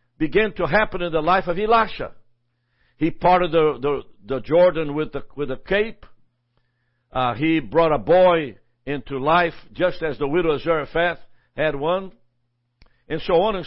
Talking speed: 165 wpm